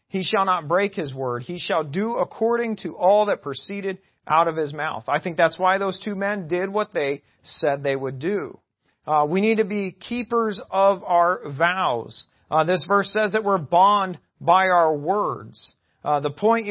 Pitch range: 155-205 Hz